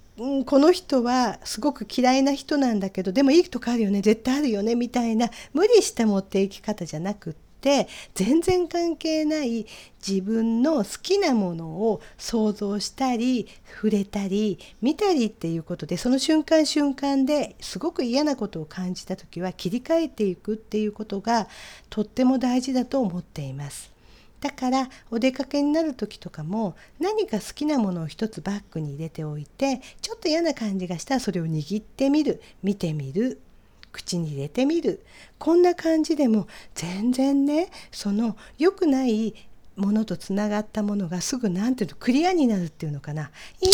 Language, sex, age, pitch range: Japanese, female, 50-69, 185-275 Hz